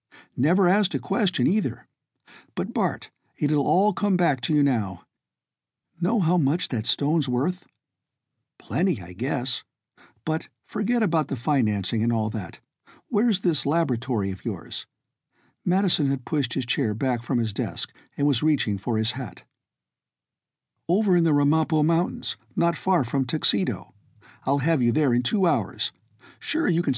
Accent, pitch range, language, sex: American, 115-150 Hz, English, male